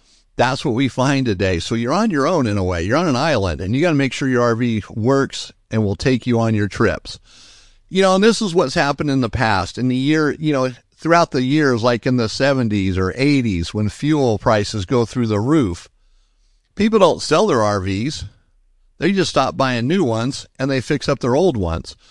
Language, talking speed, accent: English, 225 wpm, American